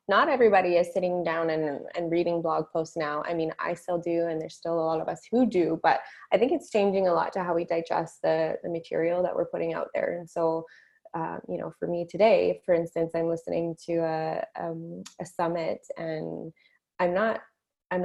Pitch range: 165-190 Hz